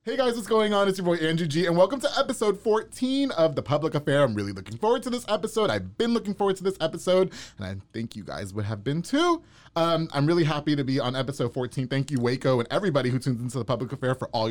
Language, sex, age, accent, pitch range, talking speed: English, male, 30-49, American, 125-190 Hz, 265 wpm